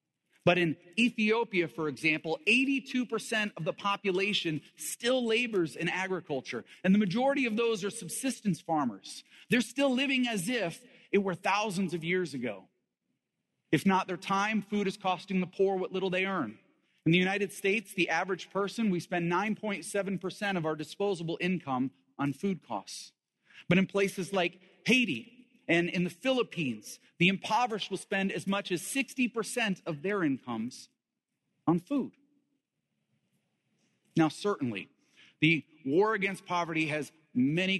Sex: male